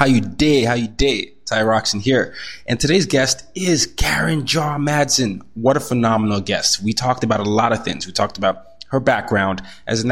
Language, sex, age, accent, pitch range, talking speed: English, male, 20-39, American, 100-120 Hz, 200 wpm